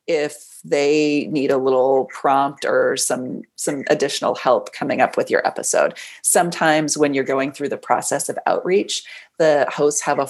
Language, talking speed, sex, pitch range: English, 170 wpm, female, 135-185 Hz